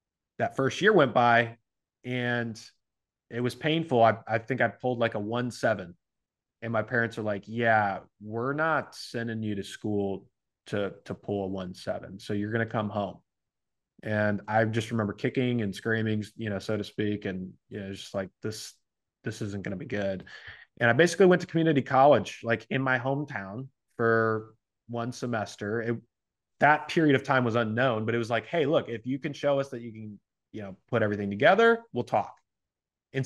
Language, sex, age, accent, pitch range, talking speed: English, male, 20-39, American, 105-130 Hz, 195 wpm